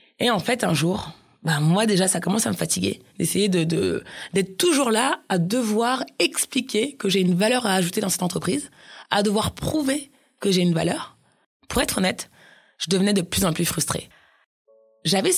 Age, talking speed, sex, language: 20-39, 190 wpm, female, French